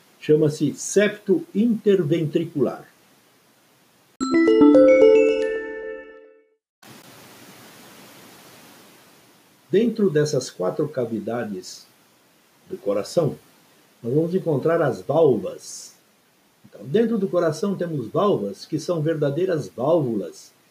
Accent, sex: Brazilian, male